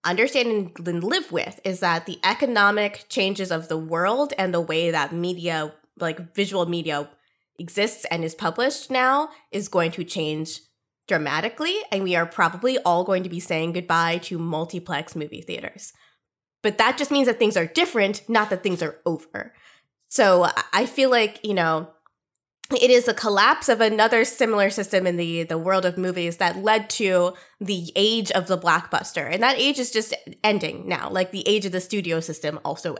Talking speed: 180 wpm